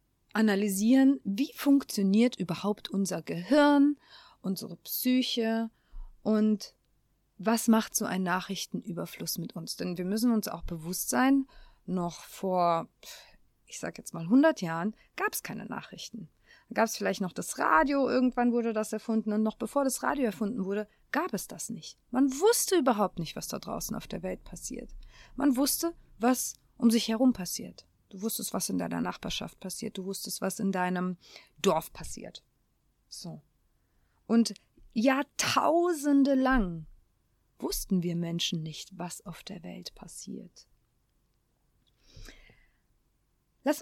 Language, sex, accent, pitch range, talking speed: German, female, German, 175-240 Hz, 140 wpm